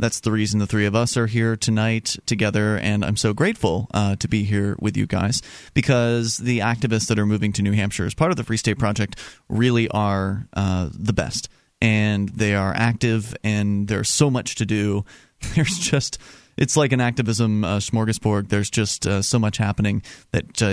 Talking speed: 200 wpm